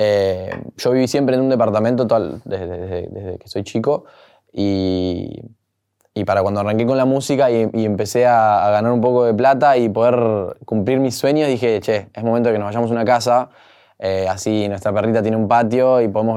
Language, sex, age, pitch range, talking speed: Spanish, male, 20-39, 105-130 Hz, 200 wpm